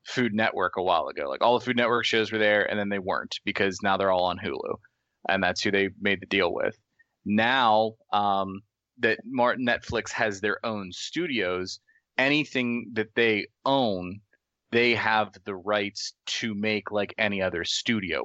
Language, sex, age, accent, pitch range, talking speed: English, male, 20-39, American, 95-110 Hz, 180 wpm